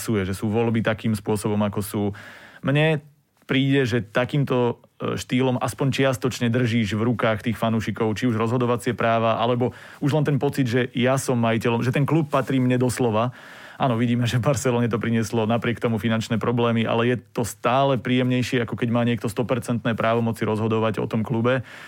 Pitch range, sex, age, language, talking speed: 115-135 Hz, male, 30-49, Slovak, 175 wpm